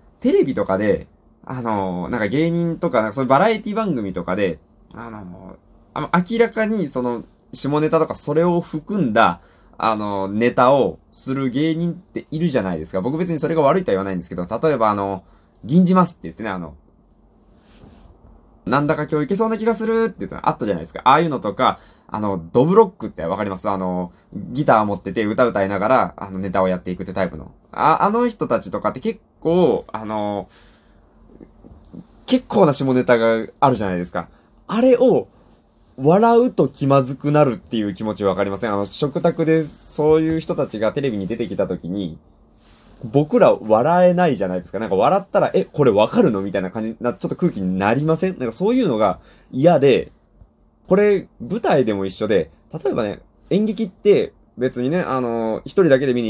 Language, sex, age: Japanese, male, 20-39